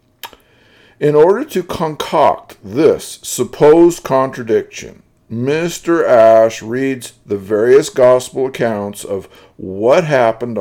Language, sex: English, male